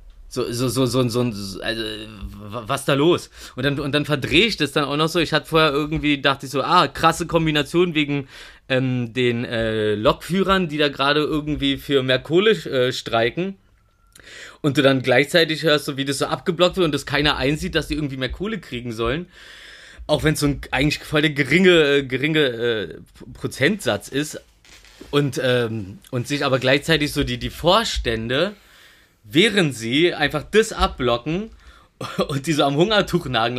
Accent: German